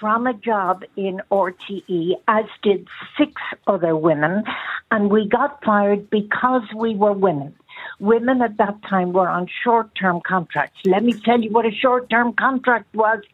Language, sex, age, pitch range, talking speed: English, female, 60-79, 185-225 Hz, 165 wpm